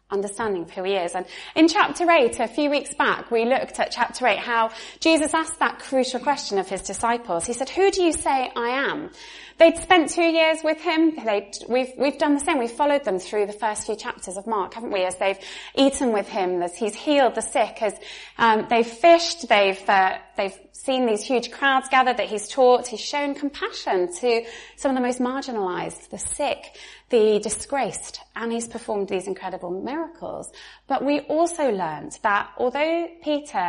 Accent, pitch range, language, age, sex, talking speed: British, 220-315 Hz, English, 20-39, female, 195 wpm